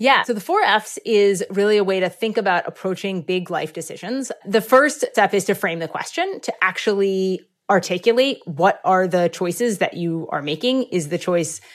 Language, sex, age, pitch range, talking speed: English, female, 30-49, 180-235 Hz, 195 wpm